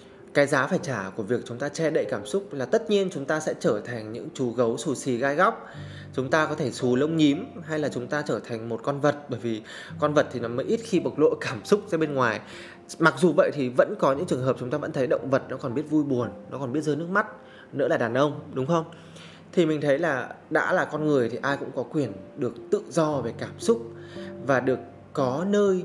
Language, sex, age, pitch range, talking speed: Vietnamese, male, 20-39, 120-160 Hz, 265 wpm